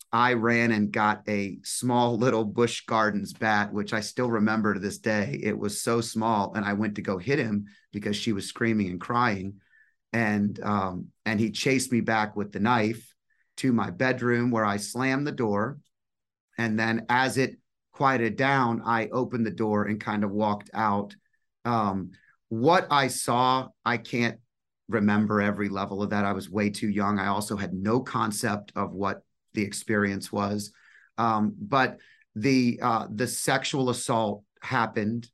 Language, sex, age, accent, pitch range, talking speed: English, male, 30-49, American, 105-120 Hz, 170 wpm